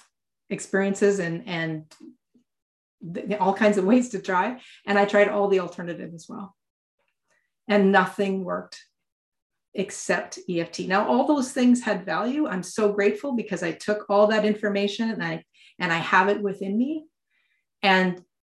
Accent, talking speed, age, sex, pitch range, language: American, 155 wpm, 30-49, female, 175-210 Hz, English